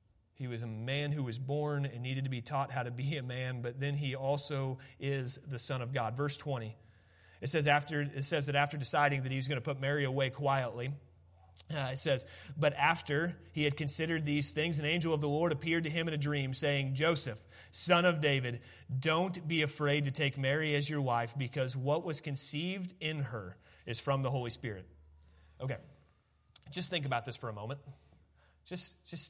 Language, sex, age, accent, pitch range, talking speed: English, male, 30-49, American, 115-145 Hz, 205 wpm